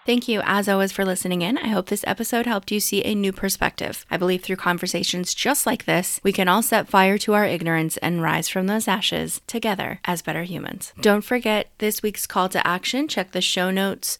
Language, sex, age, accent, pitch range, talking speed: English, female, 20-39, American, 175-205 Hz, 220 wpm